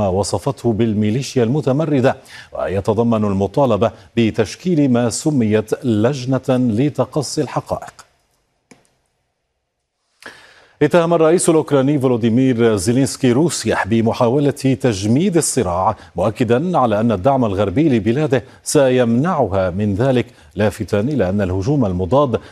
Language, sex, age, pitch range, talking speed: Arabic, male, 40-59, 105-135 Hz, 90 wpm